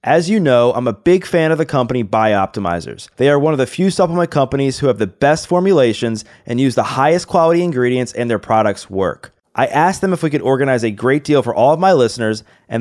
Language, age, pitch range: English, 30-49, 120-160 Hz